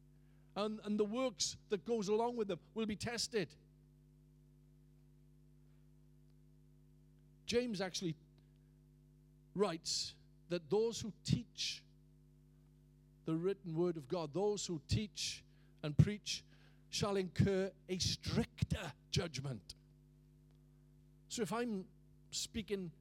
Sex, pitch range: male, 145-180 Hz